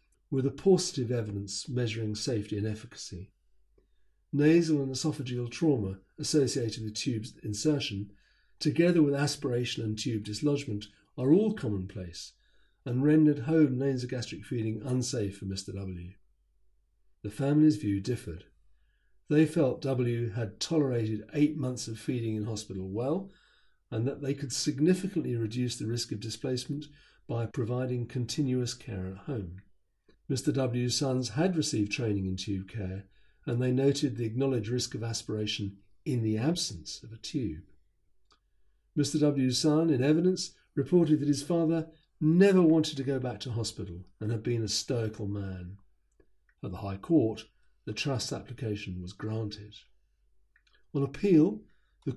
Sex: male